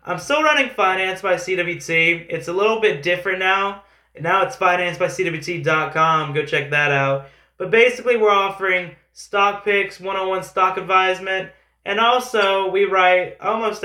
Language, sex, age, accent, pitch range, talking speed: English, male, 20-39, American, 155-190 Hz, 145 wpm